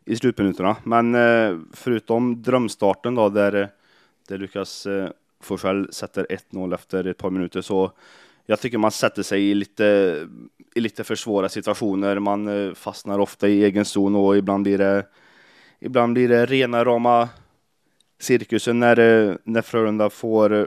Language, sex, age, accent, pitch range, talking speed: Swedish, male, 20-39, native, 100-110 Hz, 140 wpm